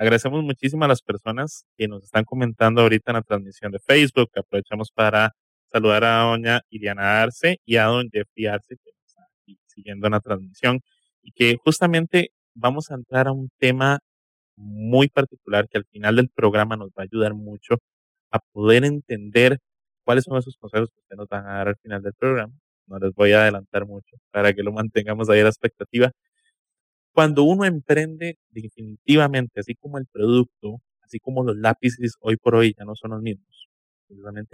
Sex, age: male, 30-49